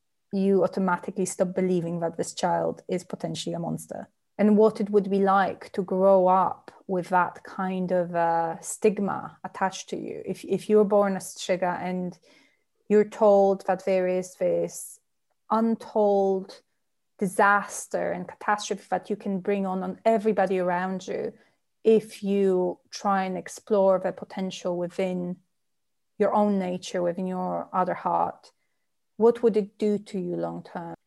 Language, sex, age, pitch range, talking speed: English, female, 30-49, 185-210 Hz, 155 wpm